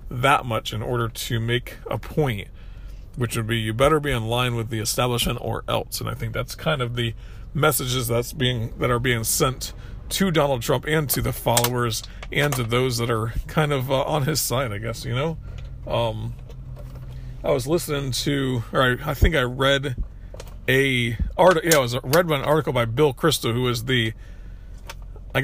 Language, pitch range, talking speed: English, 110-135 Hz, 195 wpm